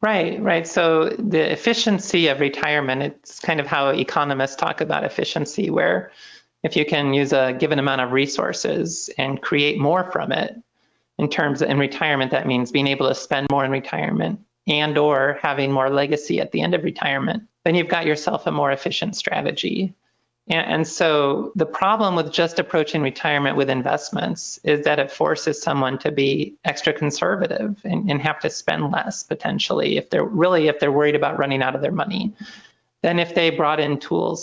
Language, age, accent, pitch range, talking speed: English, 40-59, American, 145-175 Hz, 185 wpm